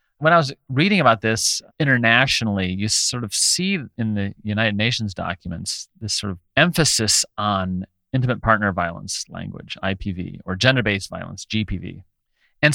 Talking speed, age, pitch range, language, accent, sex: 145 wpm, 30-49, 100-145 Hz, English, American, male